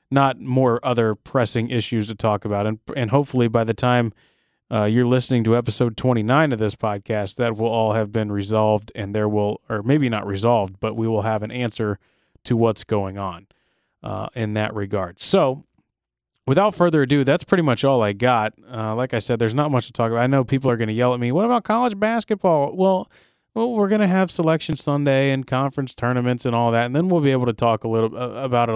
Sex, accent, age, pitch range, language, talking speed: male, American, 20-39, 110-135 Hz, English, 225 wpm